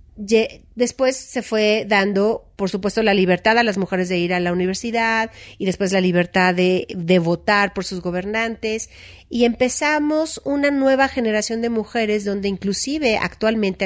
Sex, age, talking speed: female, 40-59, 155 wpm